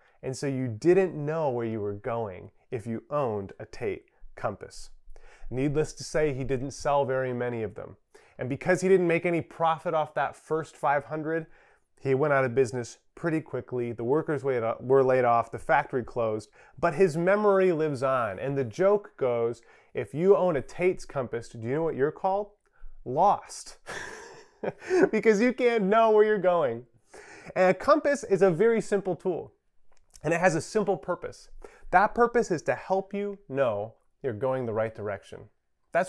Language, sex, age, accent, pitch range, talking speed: English, male, 30-49, American, 130-195 Hz, 180 wpm